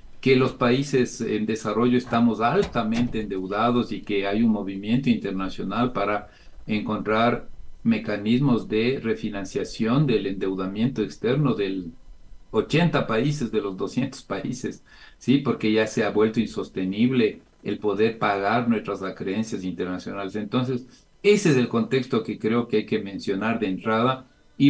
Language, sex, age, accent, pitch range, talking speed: Spanish, male, 50-69, Mexican, 100-125 Hz, 135 wpm